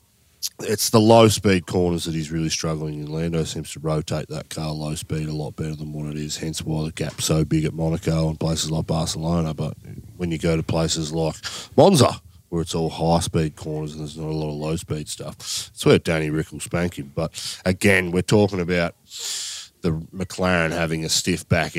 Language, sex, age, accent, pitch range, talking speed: English, male, 30-49, Australian, 80-125 Hz, 205 wpm